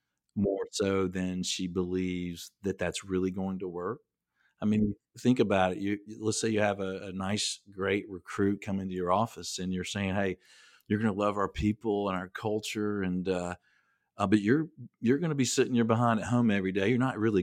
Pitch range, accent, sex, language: 95-110 Hz, American, male, English